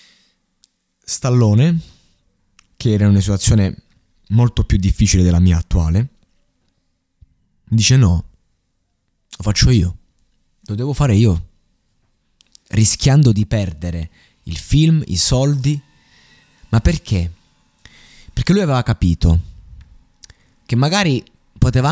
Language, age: Italian, 20-39